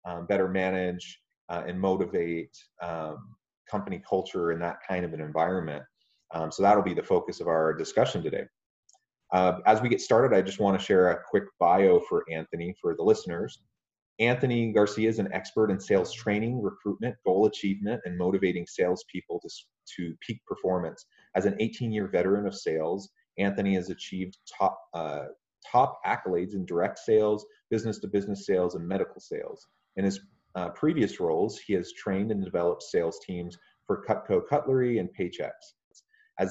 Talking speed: 170 wpm